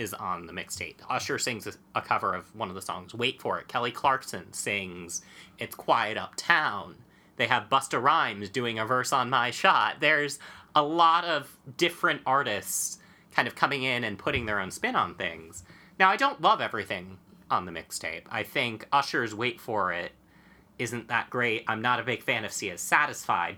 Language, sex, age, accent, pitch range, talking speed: English, male, 30-49, American, 120-165 Hz, 190 wpm